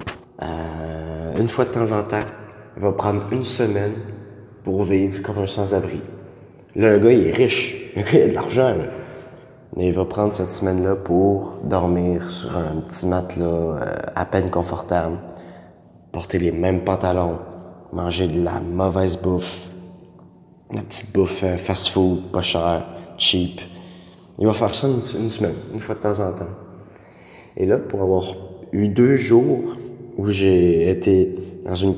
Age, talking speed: 20-39, 155 wpm